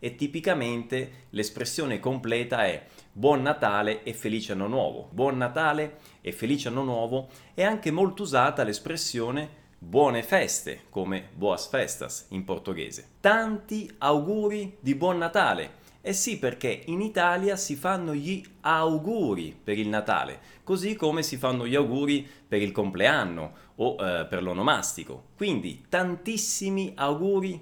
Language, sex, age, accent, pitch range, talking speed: Italian, male, 30-49, native, 130-195 Hz, 135 wpm